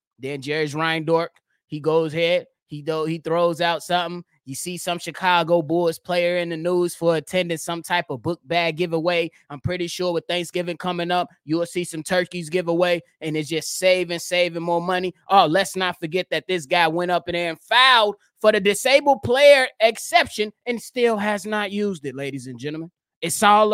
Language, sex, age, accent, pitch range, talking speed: English, male, 20-39, American, 170-245 Hz, 195 wpm